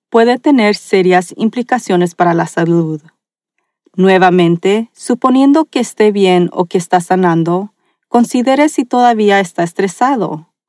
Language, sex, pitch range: Spanish, female, 175-235 Hz